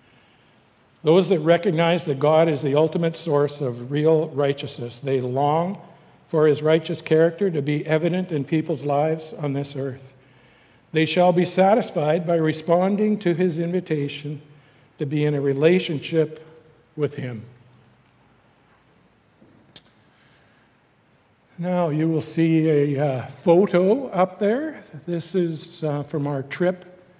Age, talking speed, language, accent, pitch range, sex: 60-79, 130 wpm, English, American, 140-170 Hz, male